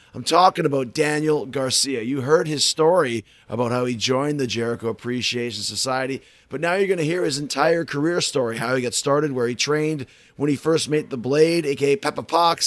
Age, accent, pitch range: 30-49, American, 120-160 Hz